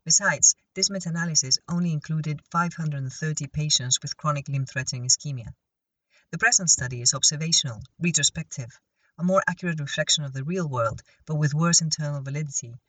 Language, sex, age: English, female, 40-59